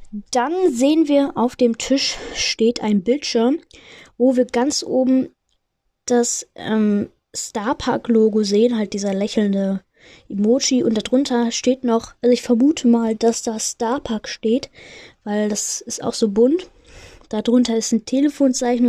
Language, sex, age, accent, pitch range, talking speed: German, female, 20-39, German, 215-255 Hz, 135 wpm